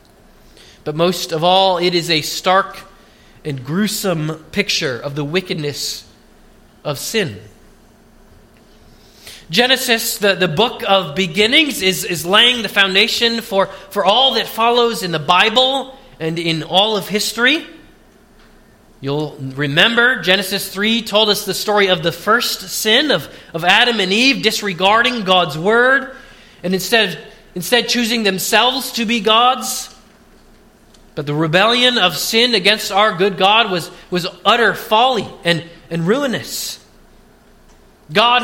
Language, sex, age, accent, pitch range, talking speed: English, male, 30-49, American, 185-235 Hz, 135 wpm